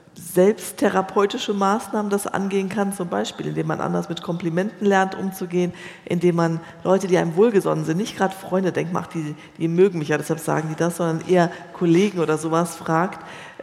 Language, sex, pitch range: English, female, 165-195 Hz